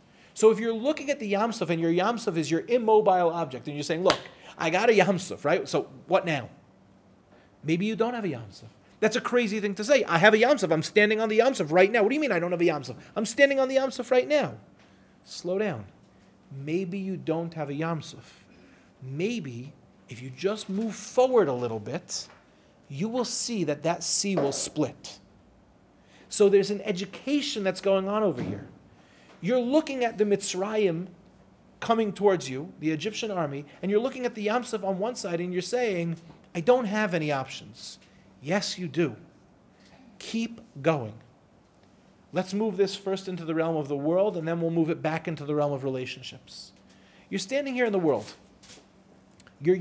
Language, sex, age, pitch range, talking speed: English, male, 40-59, 155-215 Hz, 195 wpm